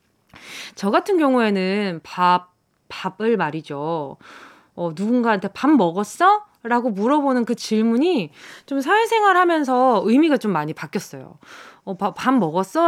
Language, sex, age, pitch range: Korean, female, 20-39, 195-280 Hz